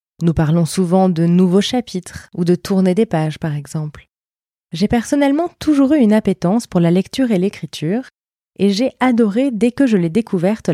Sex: female